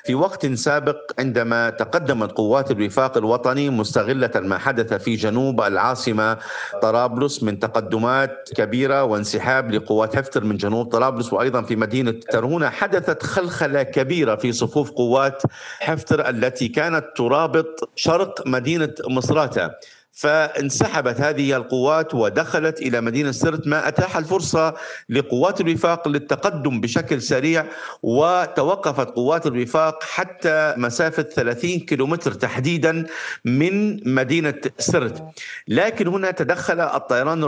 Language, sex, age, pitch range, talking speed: Arabic, male, 50-69, 125-160 Hz, 115 wpm